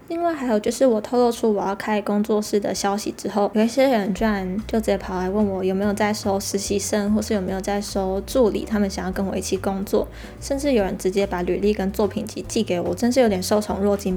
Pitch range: 195-230 Hz